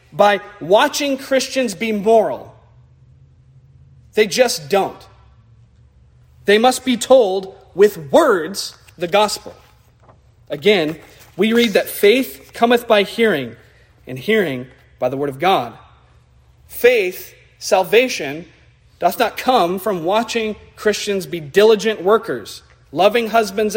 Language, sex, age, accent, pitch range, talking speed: English, male, 40-59, American, 130-215 Hz, 110 wpm